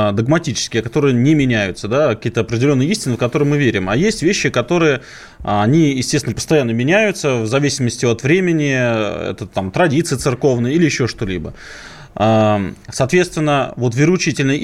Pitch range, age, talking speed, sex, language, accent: 115-150 Hz, 20-39, 140 wpm, male, Russian, native